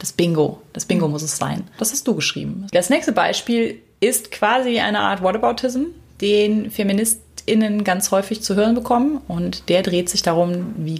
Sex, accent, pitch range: female, German, 170-210 Hz